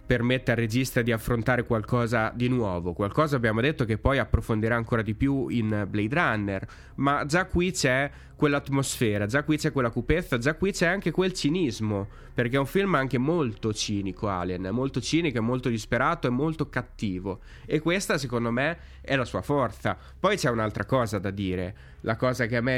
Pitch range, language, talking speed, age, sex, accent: 110-140 Hz, Italian, 185 wpm, 30-49, male, native